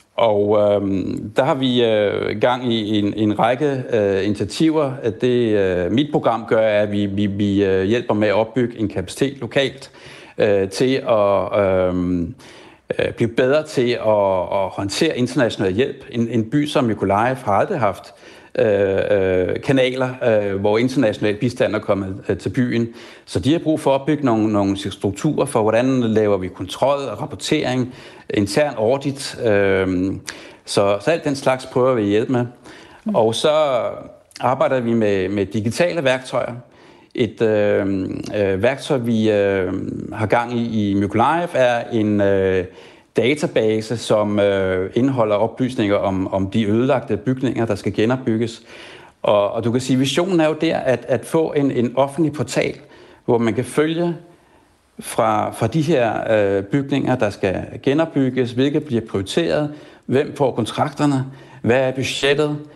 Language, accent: Danish, native